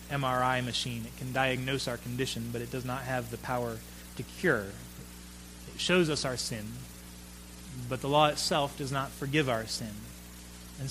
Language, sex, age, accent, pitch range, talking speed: English, male, 30-49, American, 105-145 Hz, 170 wpm